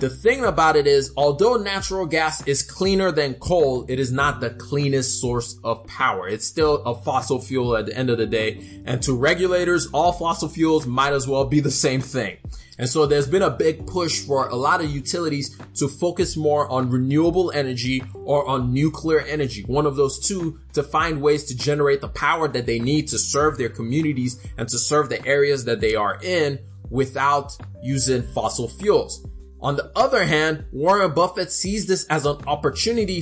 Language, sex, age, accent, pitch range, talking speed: English, male, 20-39, American, 130-160 Hz, 195 wpm